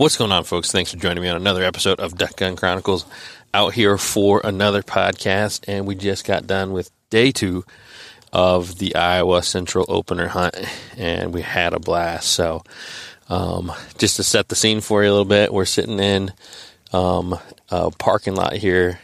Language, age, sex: English, 30-49, male